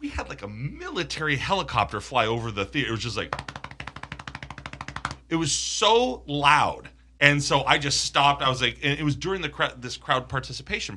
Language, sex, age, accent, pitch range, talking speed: English, male, 30-49, American, 115-160 Hz, 190 wpm